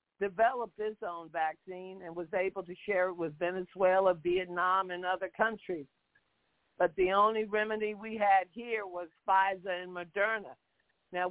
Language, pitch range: English, 175-205 Hz